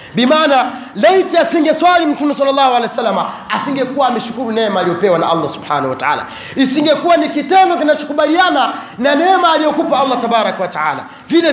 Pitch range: 220-300 Hz